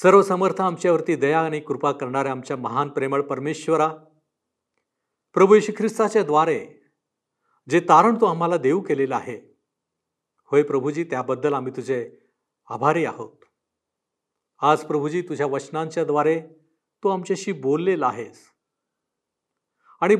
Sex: male